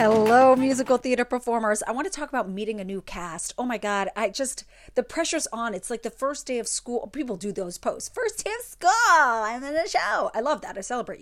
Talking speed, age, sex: 240 wpm, 30-49, female